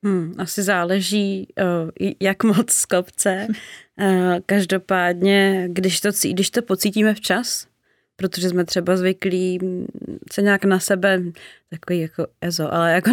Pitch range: 165-190 Hz